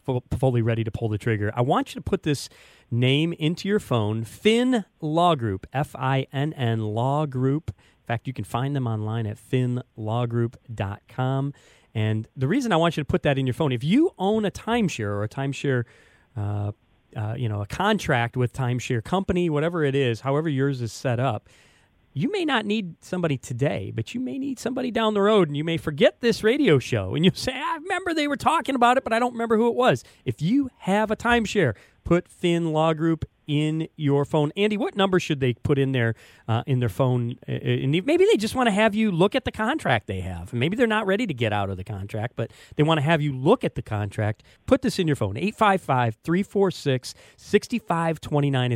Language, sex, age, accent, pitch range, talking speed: English, male, 40-59, American, 120-185 Hz, 210 wpm